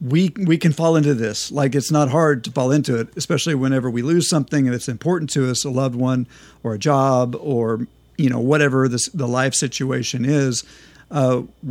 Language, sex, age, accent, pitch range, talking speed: English, male, 50-69, American, 125-165 Hz, 205 wpm